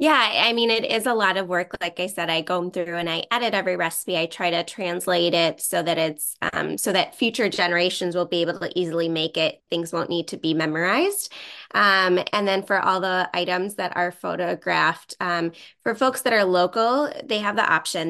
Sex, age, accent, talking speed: female, 20-39, American, 220 wpm